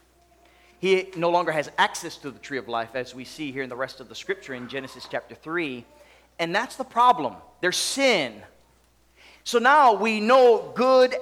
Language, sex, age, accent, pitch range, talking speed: English, male, 30-49, American, 150-230 Hz, 185 wpm